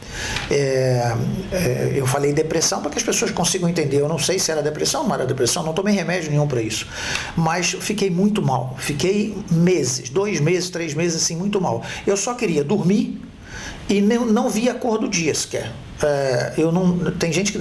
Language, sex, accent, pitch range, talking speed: Portuguese, male, Brazilian, 155-215 Hz, 200 wpm